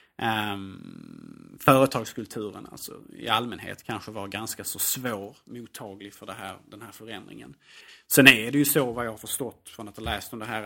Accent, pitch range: Norwegian, 105-145 Hz